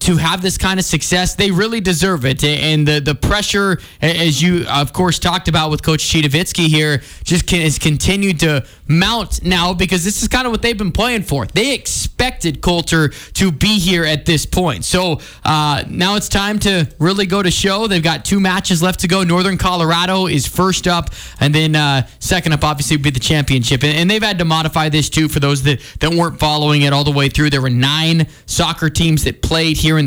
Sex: male